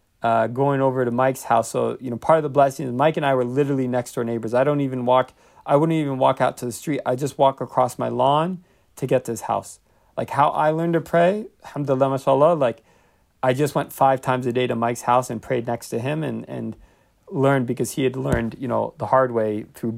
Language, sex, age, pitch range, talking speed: Arabic, male, 40-59, 115-145 Hz, 245 wpm